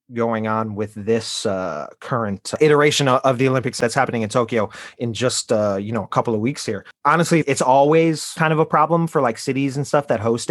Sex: male